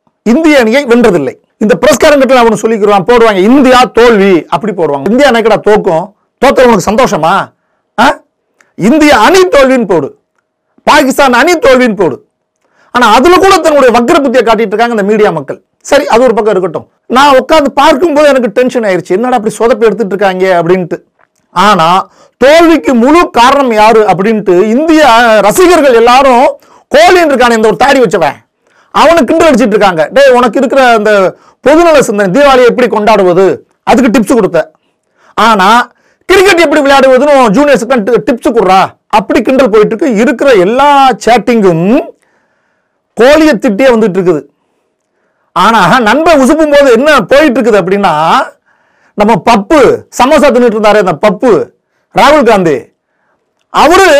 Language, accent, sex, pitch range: Tamil, native, male, 215-285 Hz